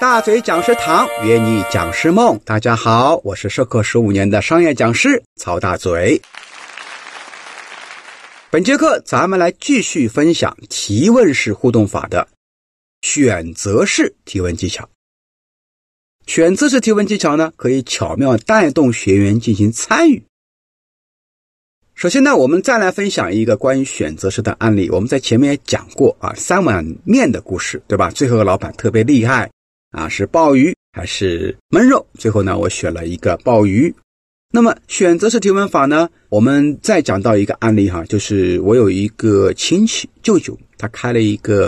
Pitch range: 100-170 Hz